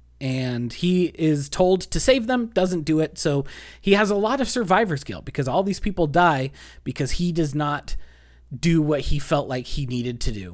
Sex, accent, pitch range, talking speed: male, American, 125-180 Hz, 205 wpm